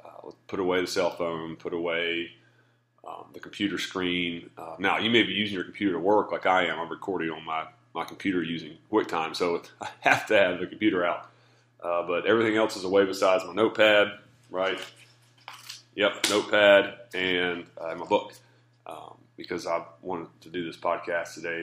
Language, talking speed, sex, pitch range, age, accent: English, 185 wpm, male, 85-120 Hz, 30-49, American